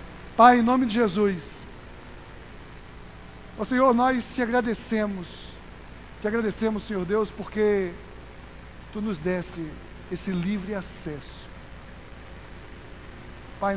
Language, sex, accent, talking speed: Portuguese, male, Brazilian, 95 wpm